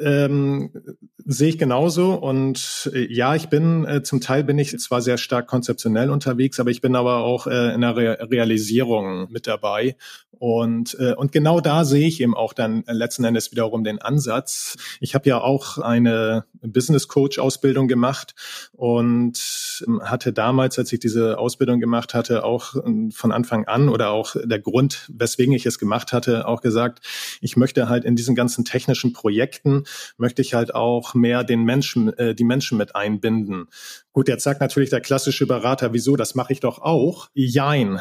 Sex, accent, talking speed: male, German, 175 wpm